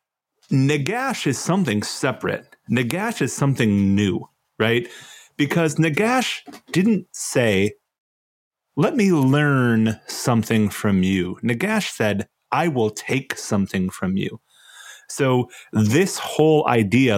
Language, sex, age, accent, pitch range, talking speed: English, male, 30-49, American, 110-160 Hz, 110 wpm